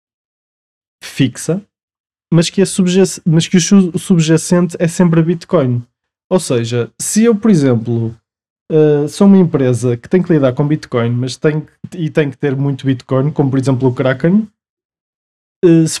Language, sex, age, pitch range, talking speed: Portuguese, male, 20-39, 130-170 Hz, 140 wpm